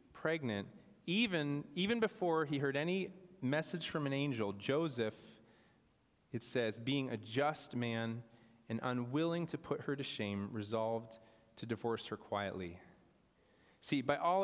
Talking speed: 135 wpm